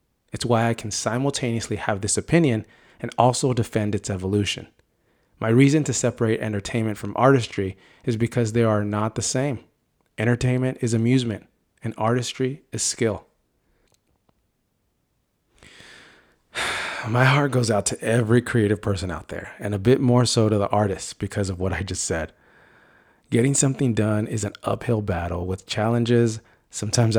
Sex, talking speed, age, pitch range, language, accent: male, 150 wpm, 30-49, 105-120 Hz, English, American